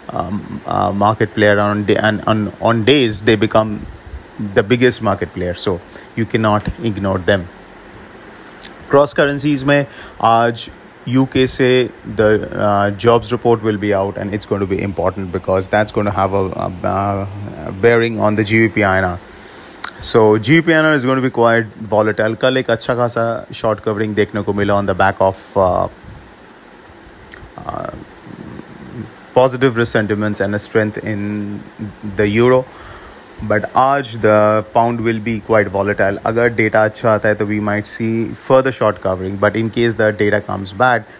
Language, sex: English, male